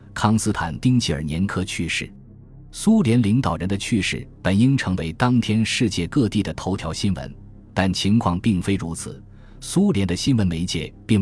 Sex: male